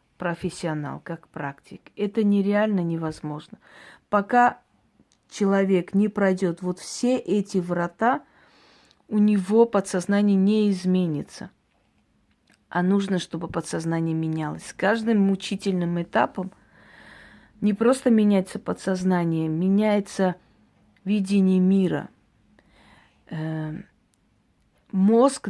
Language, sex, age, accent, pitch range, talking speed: Russian, female, 40-59, native, 180-210 Hz, 90 wpm